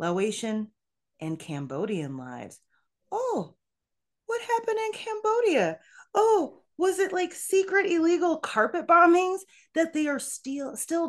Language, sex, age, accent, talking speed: English, female, 30-49, American, 120 wpm